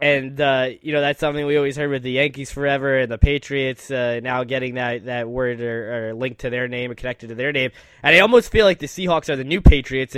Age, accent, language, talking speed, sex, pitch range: 10-29, American, English, 260 wpm, male, 130-150 Hz